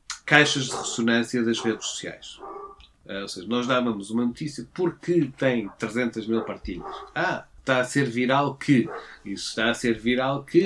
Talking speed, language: 170 wpm, Portuguese